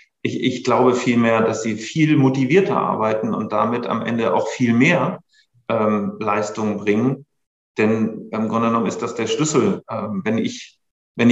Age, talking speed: 50-69, 165 wpm